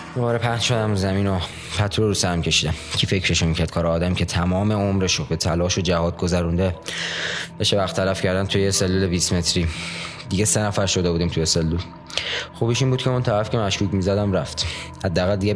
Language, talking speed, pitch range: Persian, 190 wpm, 85-105 Hz